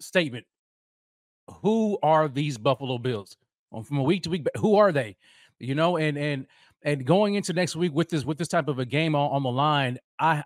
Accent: American